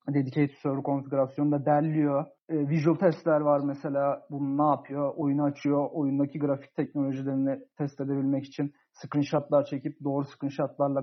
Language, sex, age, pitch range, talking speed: Turkish, male, 40-59, 140-160 Hz, 130 wpm